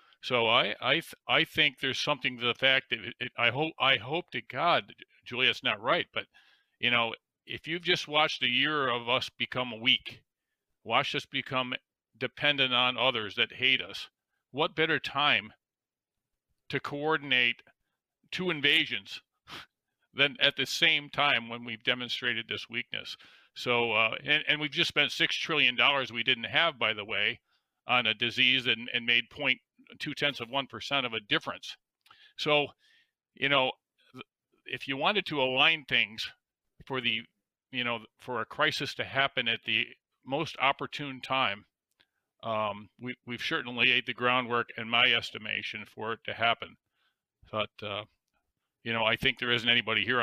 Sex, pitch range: male, 115-145 Hz